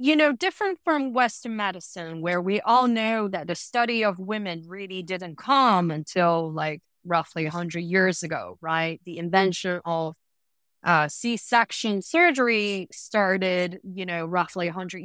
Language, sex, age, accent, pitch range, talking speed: English, female, 20-39, American, 180-245 Hz, 145 wpm